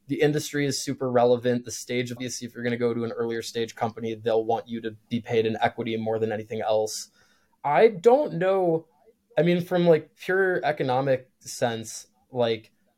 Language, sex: English, male